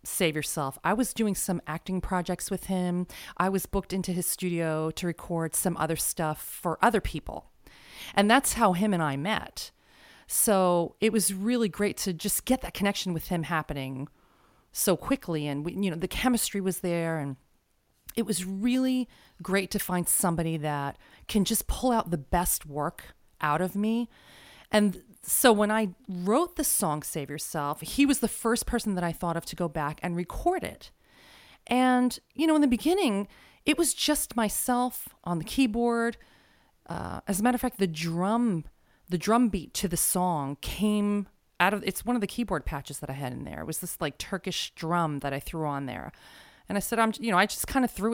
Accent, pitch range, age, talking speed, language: American, 165-225 Hz, 40-59, 200 wpm, English